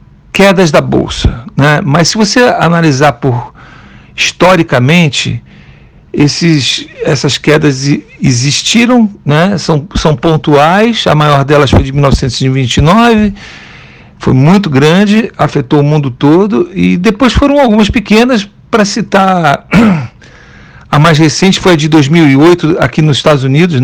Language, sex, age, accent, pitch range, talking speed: Portuguese, male, 50-69, Brazilian, 140-185 Hz, 125 wpm